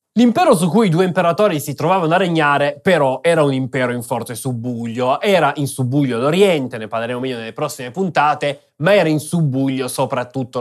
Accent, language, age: native, Italian, 20-39